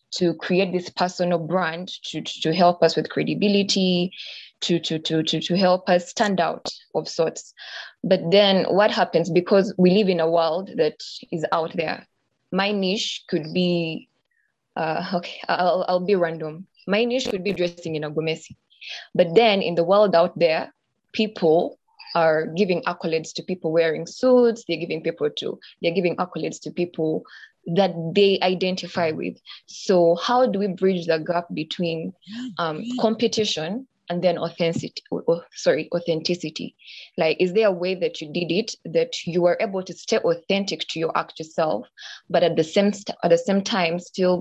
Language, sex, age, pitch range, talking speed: English, female, 20-39, 165-200 Hz, 170 wpm